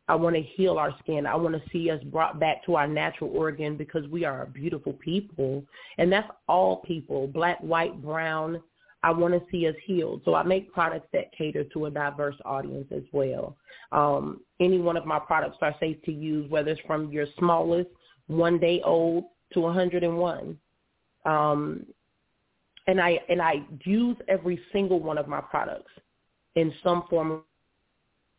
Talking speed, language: 175 wpm, English